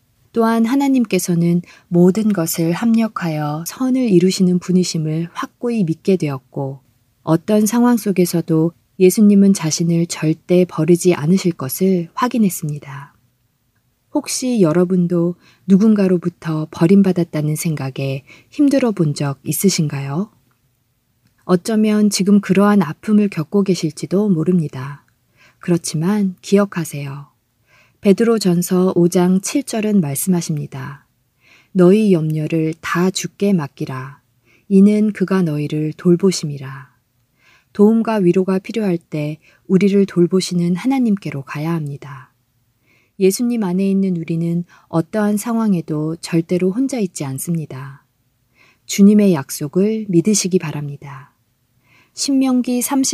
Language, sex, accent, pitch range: Korean, female, native, 145-195 Hz